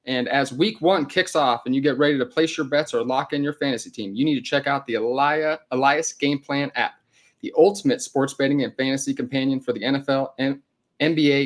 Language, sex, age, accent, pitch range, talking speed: English, male, 30-49, American, 130-150 Hz, 215 wpm